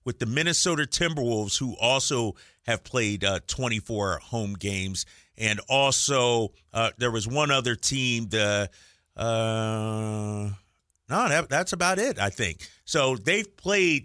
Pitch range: 100-140 Hz